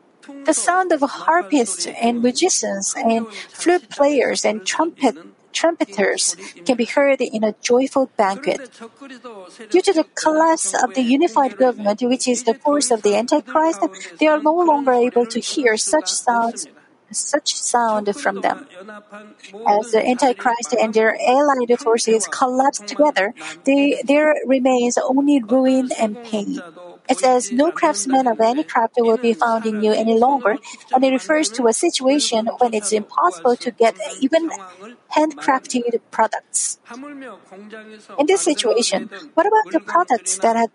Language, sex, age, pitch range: Korean, female, 50-69, 225-290 Hz